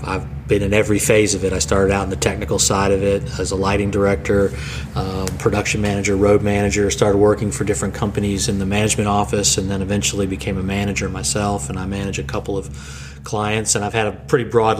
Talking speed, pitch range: 220 wpm, 100-115 Hz